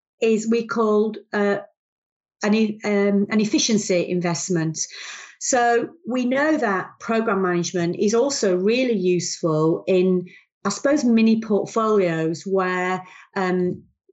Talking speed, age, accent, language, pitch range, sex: 105 wpm, 40-59, British, English, 180-210 Hz, female